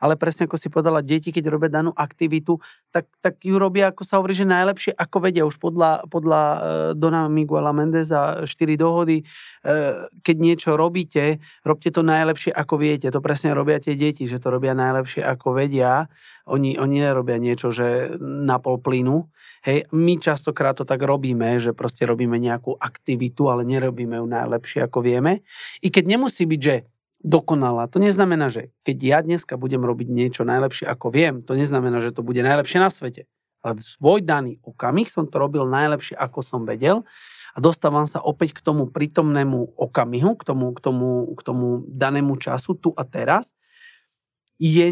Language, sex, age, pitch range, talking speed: Slovak, male, 40-59, 130-165 Hz, 175 wpm